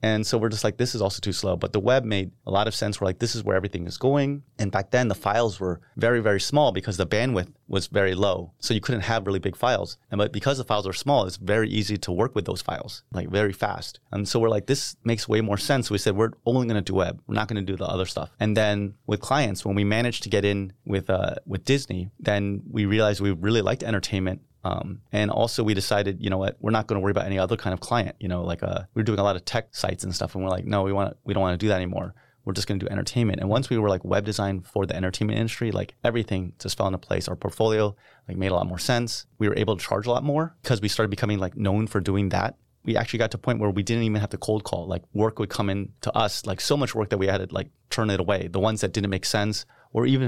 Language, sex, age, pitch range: Chinese, male, 30-49, 95-115 Hz